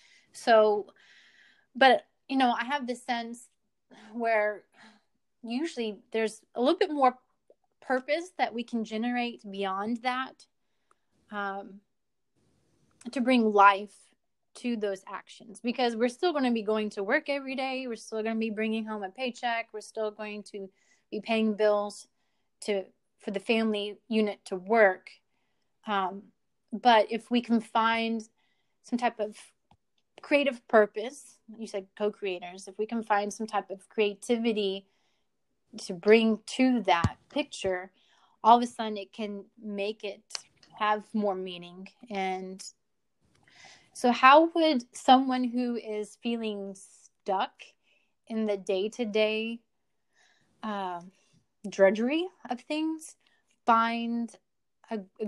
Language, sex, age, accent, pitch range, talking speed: English, female, 30-49, American, 205-240 Hz, 130 wpm